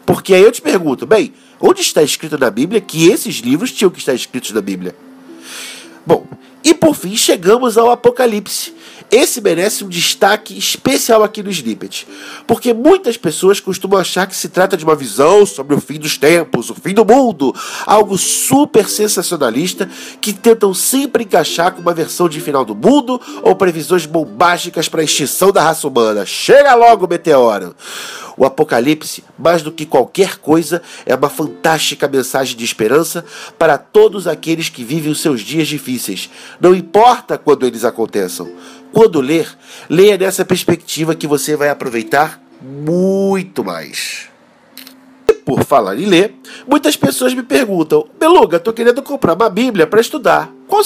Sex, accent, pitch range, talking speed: male, Brazilian, 155-235 Hz, 160 wpm